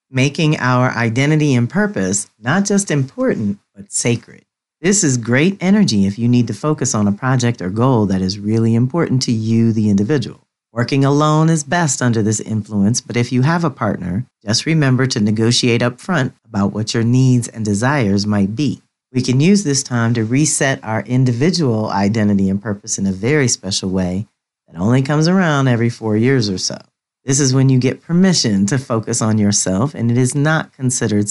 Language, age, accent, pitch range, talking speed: English, 40-59, American, 105-130 Hz, 190 wpm